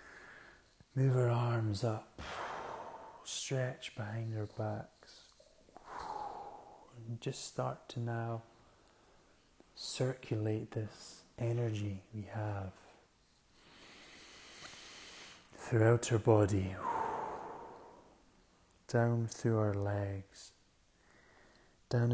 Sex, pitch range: male, 105-120 Hz